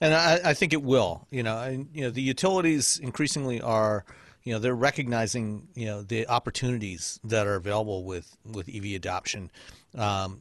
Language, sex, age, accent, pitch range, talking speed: English, male, 40-59, American, 105-130 Hz, 175 wpm